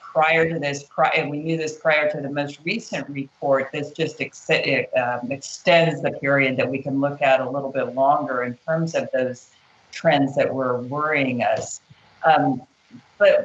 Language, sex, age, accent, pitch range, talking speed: English, female, 50-69, American, 150-190 Hz, 185 wpm